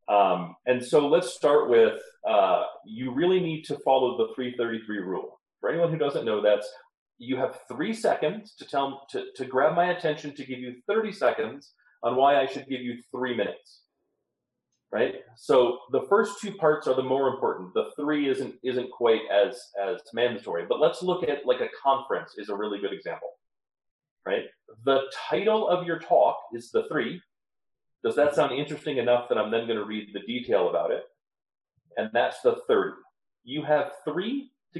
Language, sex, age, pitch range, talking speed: English, male, 30-49, 125-210 Hz, 185 wpm